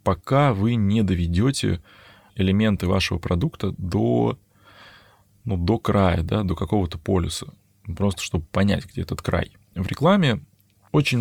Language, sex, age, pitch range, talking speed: Russian, male, 20-39, 90-105 Hz, 125 wpm